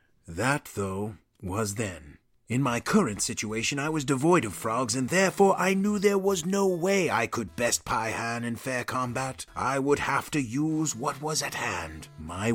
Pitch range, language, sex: 120-165 Hz, English, male